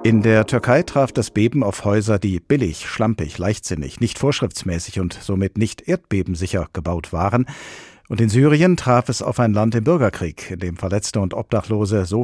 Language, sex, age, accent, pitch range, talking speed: German, male, 50-69, German, 95-125 Hz, 175 wpm